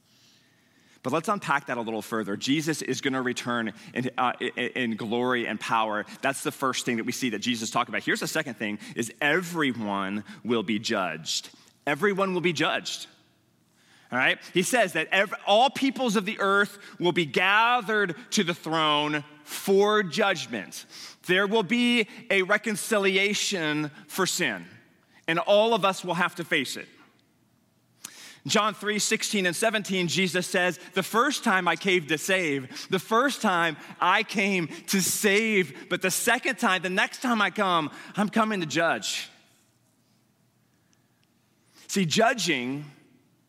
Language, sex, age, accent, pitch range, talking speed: English, male, 30-49, American, 150-210 Hz, 155 wpm